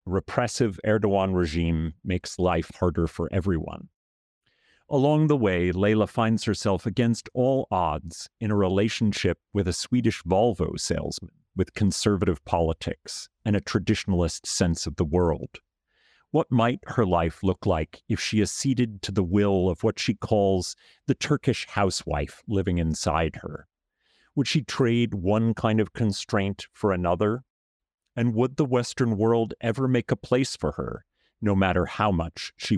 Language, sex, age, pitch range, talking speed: English, male, 40-59, 90-115 Hz, 150 wpm